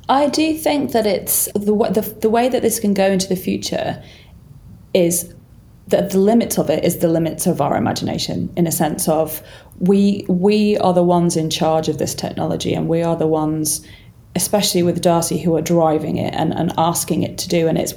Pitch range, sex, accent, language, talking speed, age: 165-200 Hz, female, British, English, 205 wpm, 30-49